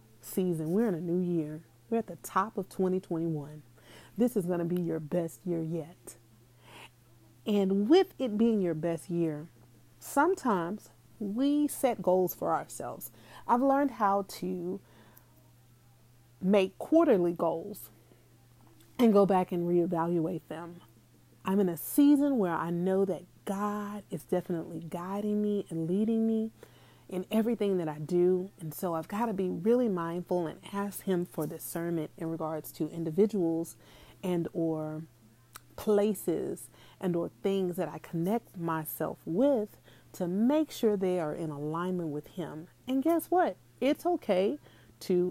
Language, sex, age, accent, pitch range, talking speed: English, female, 30-49, American, 160-210 Hz, 145 wpm